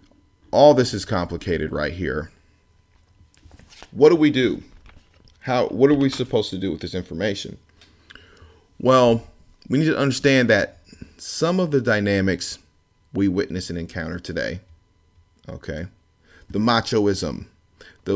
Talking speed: 130 wpm